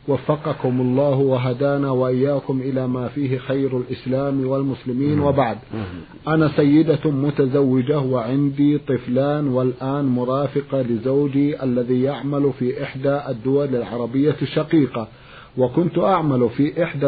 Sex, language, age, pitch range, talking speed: male, Arabic, 50-69, 130-150 Hz, 105 wpm